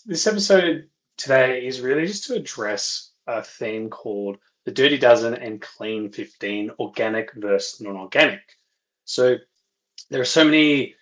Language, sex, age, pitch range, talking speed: English, male, 20-39, 110-155 Hz, 140 wpm